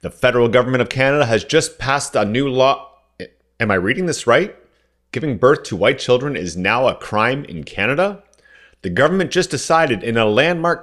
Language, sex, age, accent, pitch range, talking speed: English, male, 40-59, American, 110-145 Hz, 190 wpm